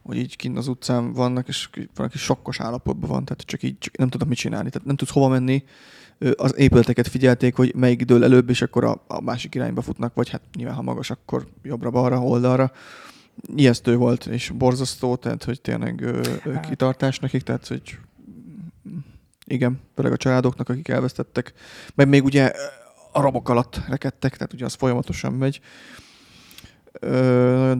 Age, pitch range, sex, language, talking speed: 20-39, 120-135 Hz, male, Hungarian, 165 wpm